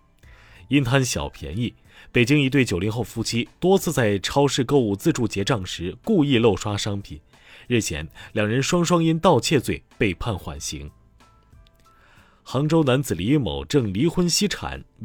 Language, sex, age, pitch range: Chinese, male, 30-49, 95-135 Hz